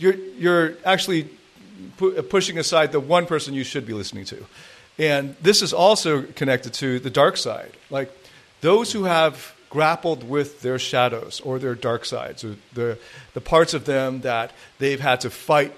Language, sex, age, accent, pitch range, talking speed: English, male, 40-59, American, 125-165 Hz, 175 wpm